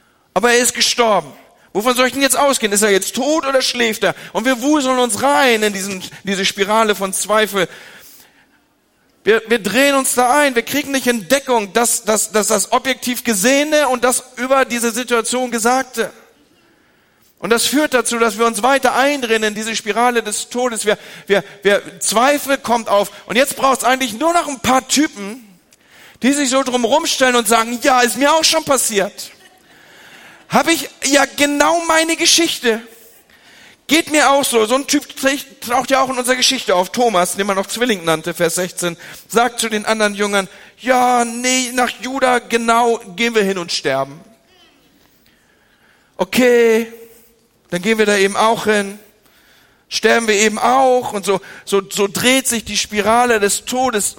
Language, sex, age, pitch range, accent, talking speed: German, male, 40-59, 210-260 Hz, German, 175 wpm